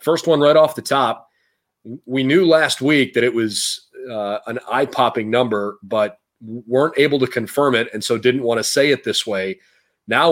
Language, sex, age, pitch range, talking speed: English, male, 30-49, 110-140 Hz, 190 wpm